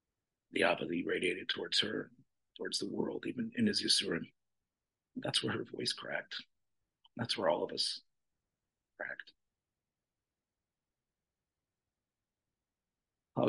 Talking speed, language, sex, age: 115 wpm, English, male, 50-69